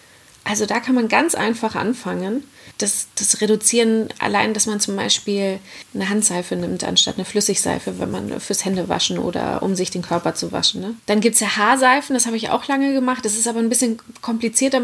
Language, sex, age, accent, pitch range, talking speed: German, female, 30-49, German, 205-255 Hz, 205 wpm